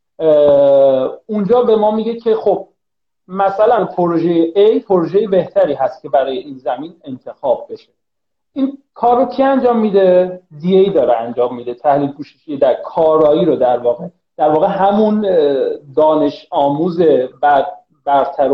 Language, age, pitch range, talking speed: Persian, 40-59, 150-210 Hz, 135 wpm